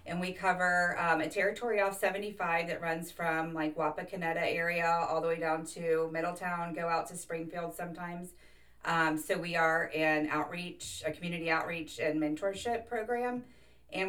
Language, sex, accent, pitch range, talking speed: English, female, American, 150-170 Hz, 160 wpm